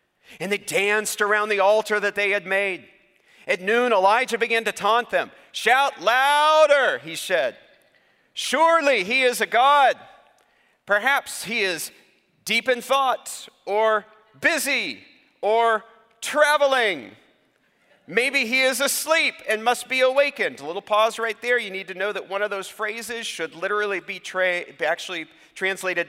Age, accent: 40-59, American